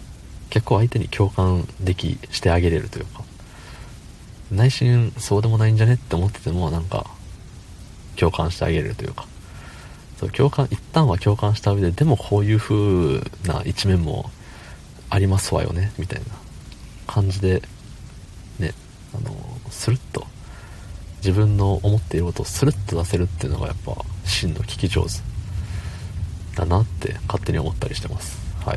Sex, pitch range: male, 90-110 Hz